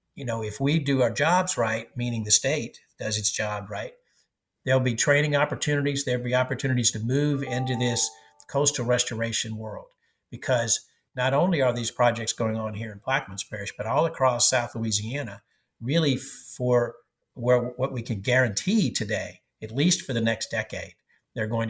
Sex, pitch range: male, 115-130 Hz